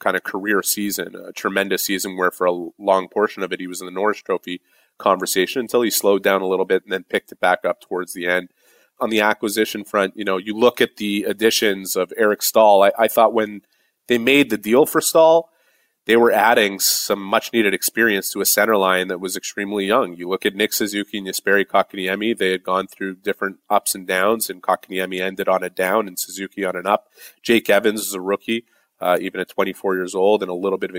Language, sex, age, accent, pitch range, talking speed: English, male, 30-49, American, 95-110 Hz, 230 wpm